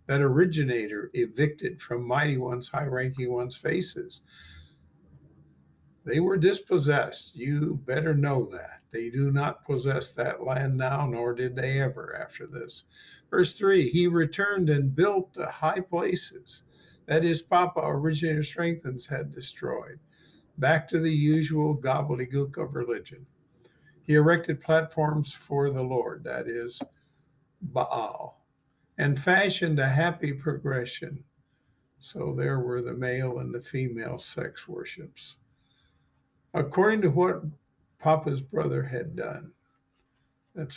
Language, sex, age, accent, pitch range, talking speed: English, male, 60-79, American, 125-160 Hz, 125 wpm